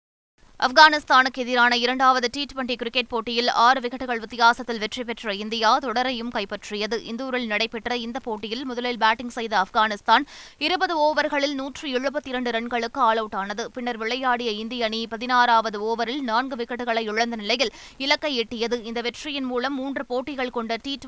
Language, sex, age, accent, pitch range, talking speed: Tamil, female, 20-39, native, 230-275 Hz, 135 wpm